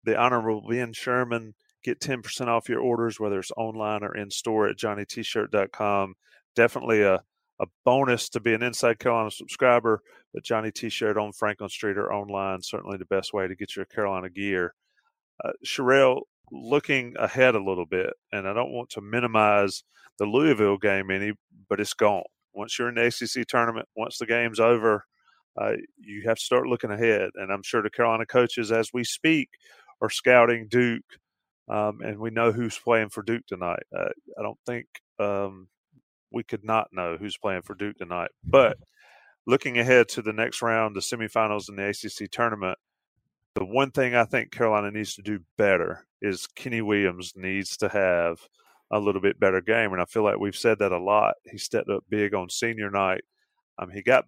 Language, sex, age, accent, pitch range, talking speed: English, male, 40-59, American, 100-120 Hz, 185 wpm